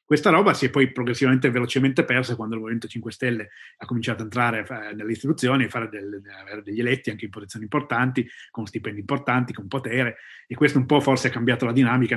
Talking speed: 215 wpm